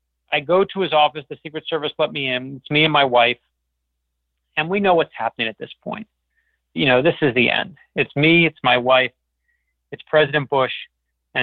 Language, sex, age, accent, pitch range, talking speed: English, male, 40-59, American, 125-155 Hz, 205 wpm